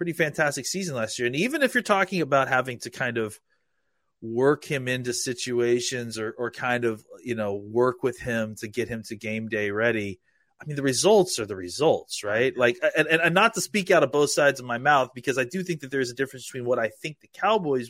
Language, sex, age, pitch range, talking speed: English, male, 30-49, 120-150 Hz, 235 wpm